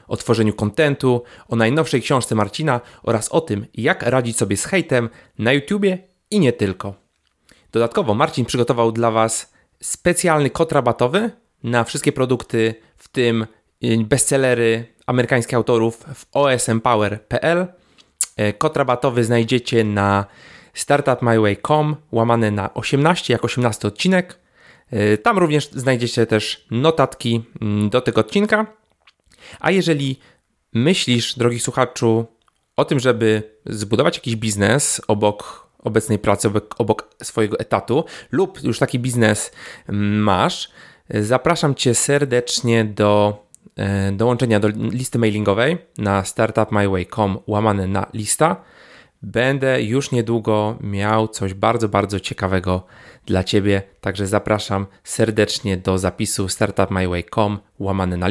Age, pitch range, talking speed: 30-49, 105-130 Hz, 110 wpm